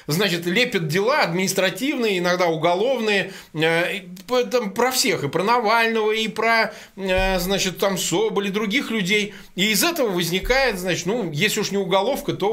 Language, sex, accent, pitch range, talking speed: Russian, male, native, 160-215 Hz, 150 wpm